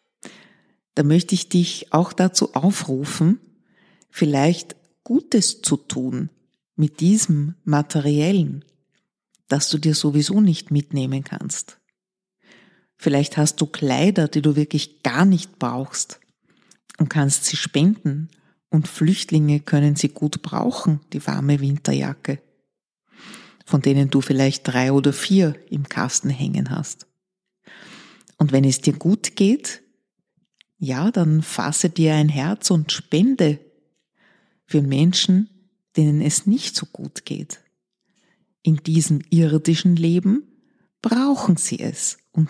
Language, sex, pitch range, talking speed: German, female, 150-195 Hz, 120 wpm